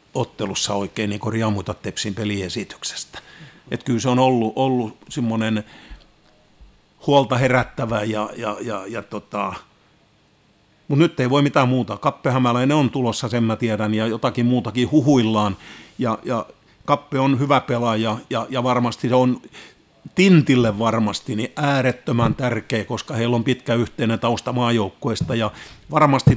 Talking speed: 140 wpm